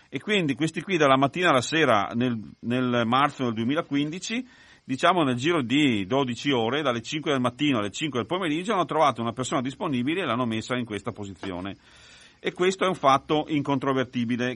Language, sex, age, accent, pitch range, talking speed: Italian, male, 40-59, native, 110-145 Hz, 180 wpm